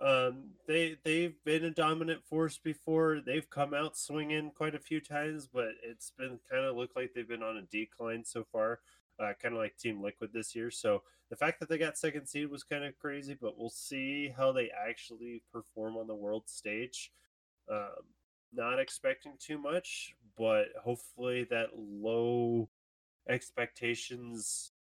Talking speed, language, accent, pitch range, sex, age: 170 wpm, English, American, 110-145 Hz, male, 20-39